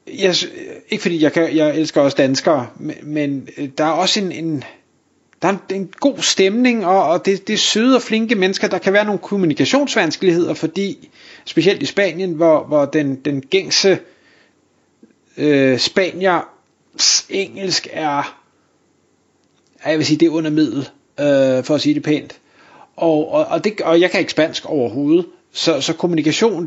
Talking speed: 170 wpm